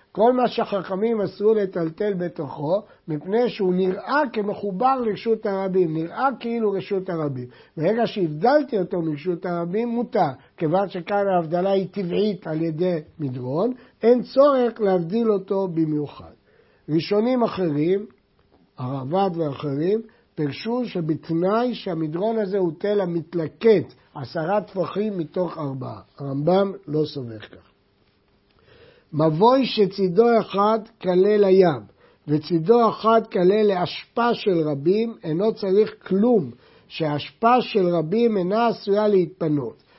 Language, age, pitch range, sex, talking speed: Hebrew, 60-79, 160-220 Hz, male, 110 wpm